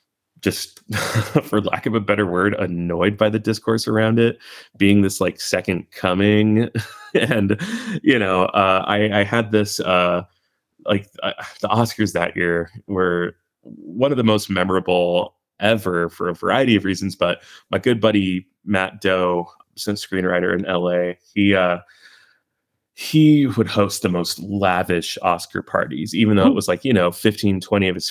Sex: male